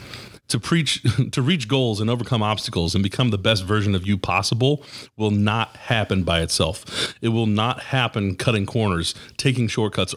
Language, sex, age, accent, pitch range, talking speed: English, male, 40-59, American, 100-130 Hz, 170 wpm